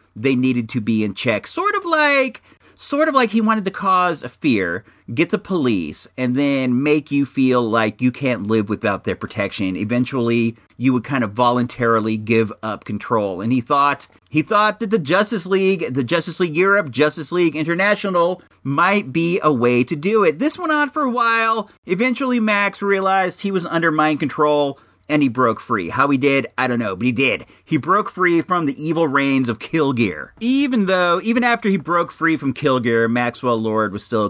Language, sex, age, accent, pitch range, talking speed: English, male, 40-59, American, 120-190 Hz, 200 wpm